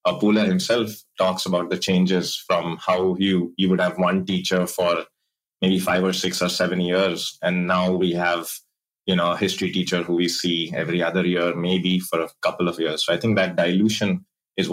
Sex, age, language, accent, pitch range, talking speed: male, 20-39, Marathi, native, 90-120 Hz, 205 wpm